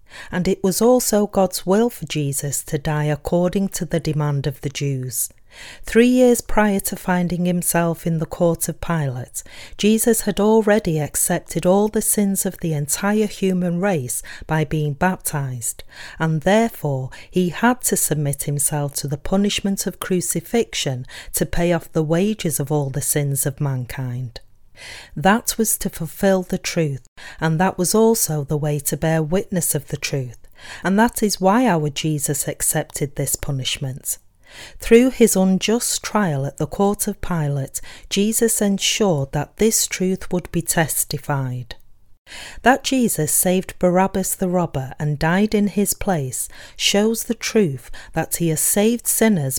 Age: 40-59